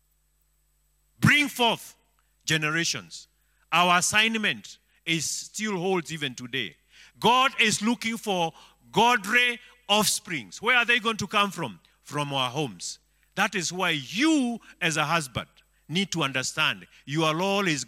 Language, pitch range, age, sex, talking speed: English, 150-215 Hz, 50-69, male, 130 wpm